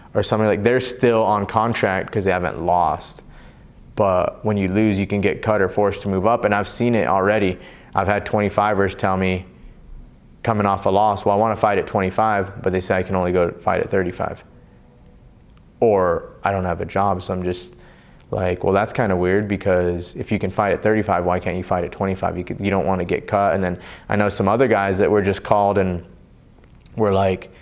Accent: American